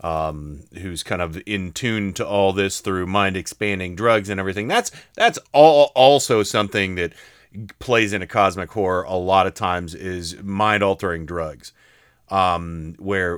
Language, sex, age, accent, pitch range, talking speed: English, male, 30-49, American, 85-105 Hz, 150 wpm